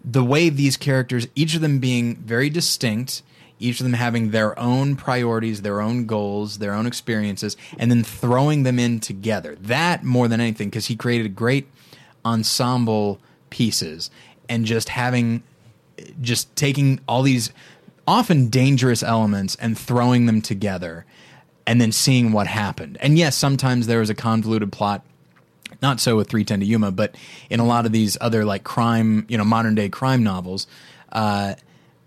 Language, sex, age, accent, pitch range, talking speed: English, male, 20-39, American, 110-135 Hz, 170 wpm